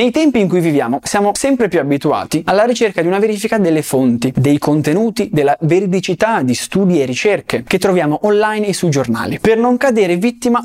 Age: 20-39